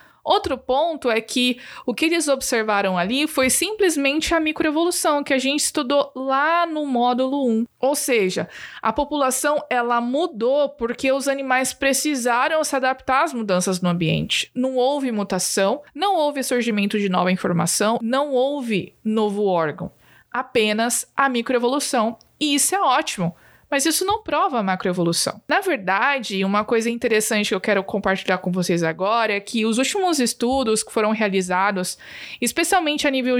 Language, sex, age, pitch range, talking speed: Portuguese, female, 20-39, 220-280 Hz, 150 wpm